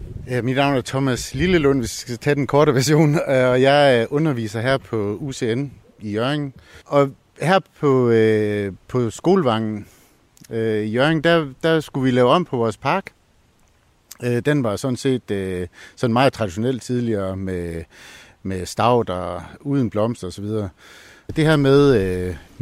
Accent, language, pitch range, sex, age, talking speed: native, Danish, 105-140 Hz, male, 60-79, 155 wpm